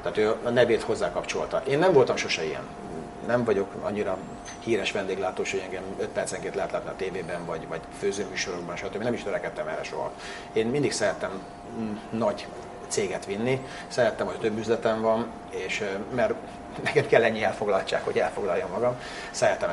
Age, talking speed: 30-49, 165 wpm